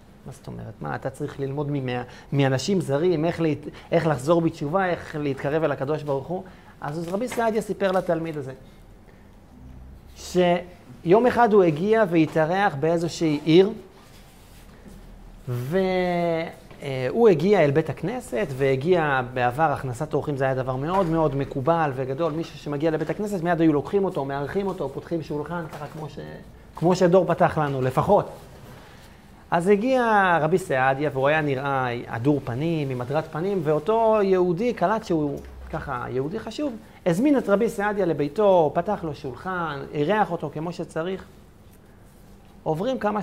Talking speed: 140 wpm